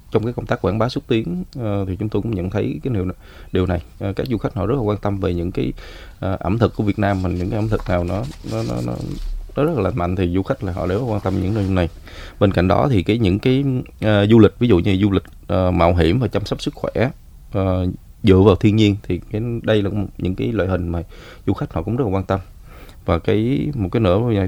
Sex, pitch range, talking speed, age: male, 90-110 Hz, 260 wpm, 20-39